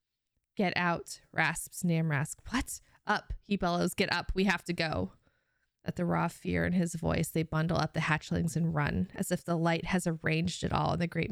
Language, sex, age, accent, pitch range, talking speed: English, female, 20-39, American, 160-180 Hz, 205 wpm